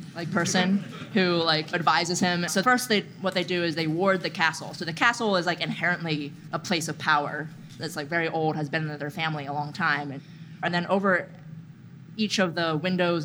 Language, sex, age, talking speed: English, female, 20-39, 215 wpm